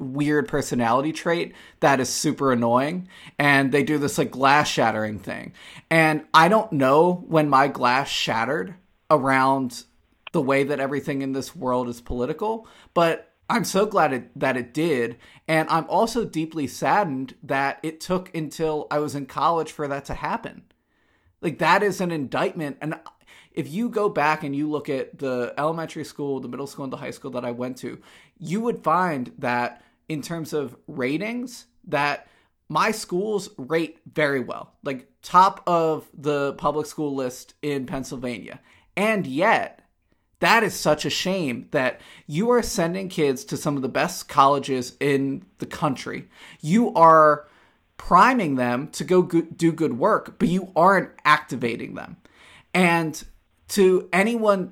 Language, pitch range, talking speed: English, 135-170 Hz, 160 wpm